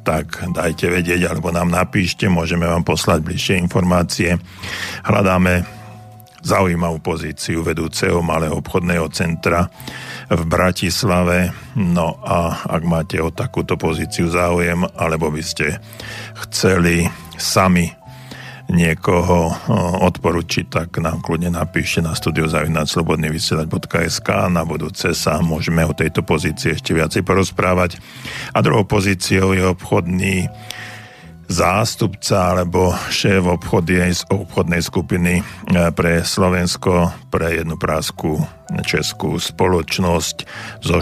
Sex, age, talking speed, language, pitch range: male, 50-69, 105 wpm, Slovak, 85-95 Hz